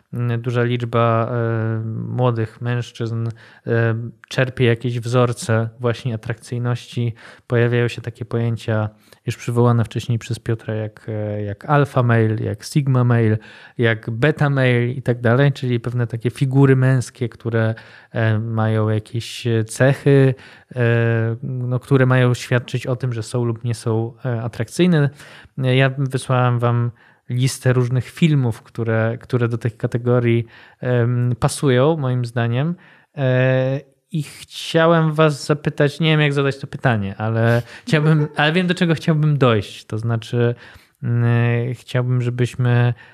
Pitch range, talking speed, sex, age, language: 115-135 Hz, 120 wpm, male, 20-39, Polish